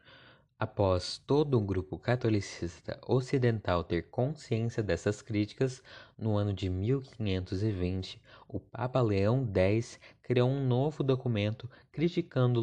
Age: 20-39